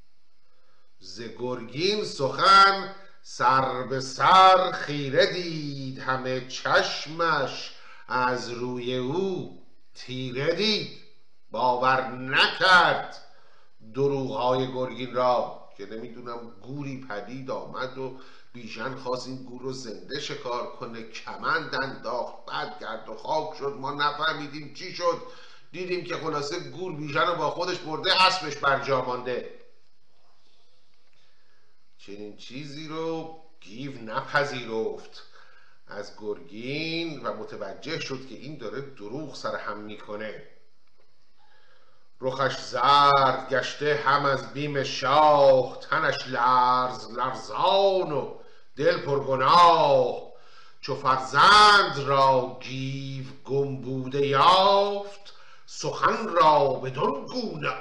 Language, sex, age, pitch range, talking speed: Persian, male, 50-69, 125-165 Hz, 100 wpm